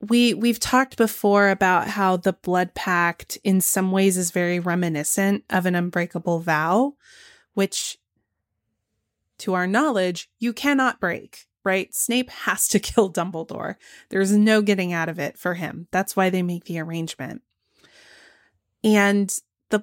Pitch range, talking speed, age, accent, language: 175-225 Hz, 150 wpm, 20-39, American, English